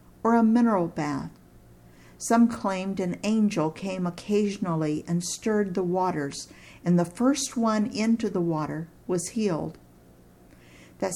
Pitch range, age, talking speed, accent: 160-215 Hz, 50-69, 130 wpm, American